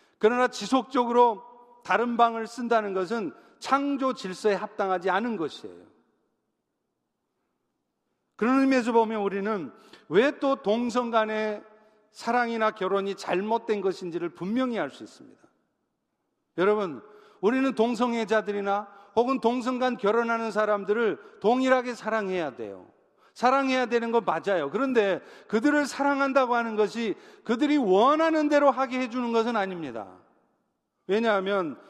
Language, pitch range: Korean, 205-250 Hz